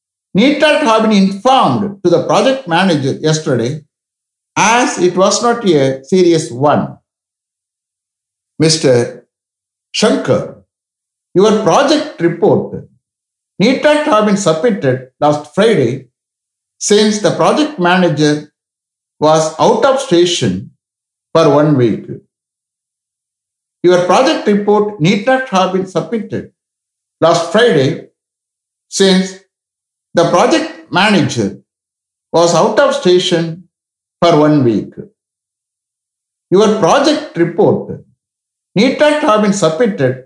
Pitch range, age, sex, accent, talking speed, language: 125-210 Hz, 60-79, male, Indian, 100 wpm, English